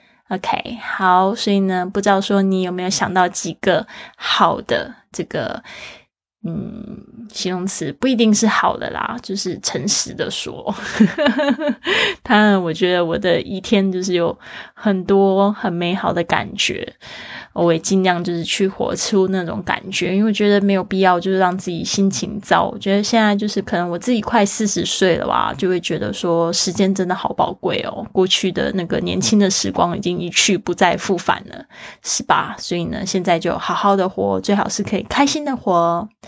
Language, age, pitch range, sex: Chinese, 20-39, 180-215 Hz, female